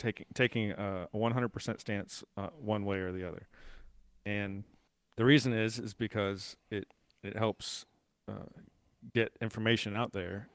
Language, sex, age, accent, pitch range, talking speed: English, male, 40-59, American, 100-115 Hz, 150 wpm